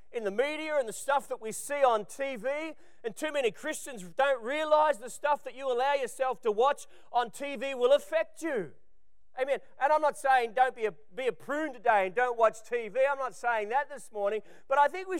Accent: Australian